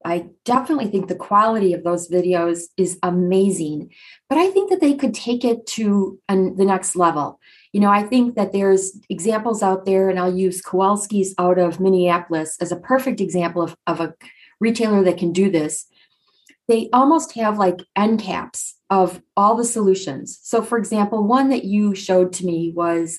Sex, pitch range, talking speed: female, 180-225 Hz, 180 wpm